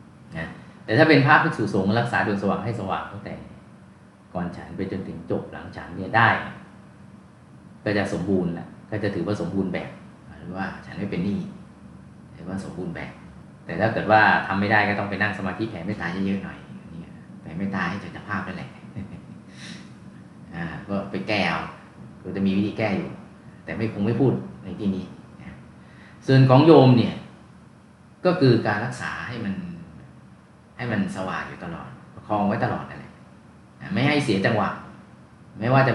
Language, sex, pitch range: Thai, male, 95-120 Hz